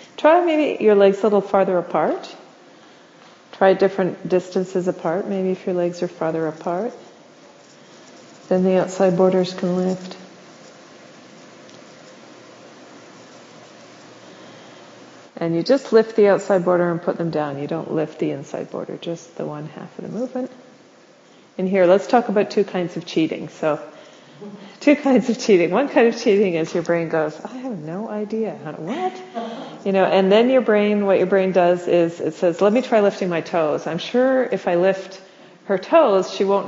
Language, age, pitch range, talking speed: English, 40-59, 170-205 Hz, 170 wpm